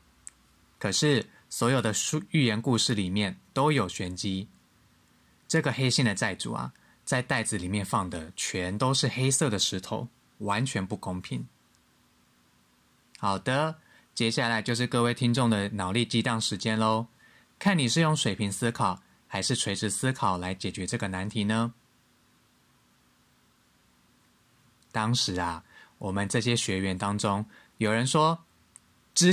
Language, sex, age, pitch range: Chinese, male, 20-39, 95-135 Hz